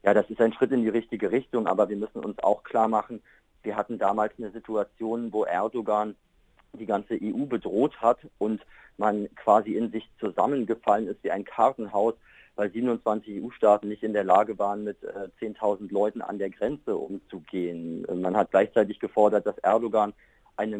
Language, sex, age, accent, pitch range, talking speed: German, male, 40-59, German, 105-115 Hz, 175 wpm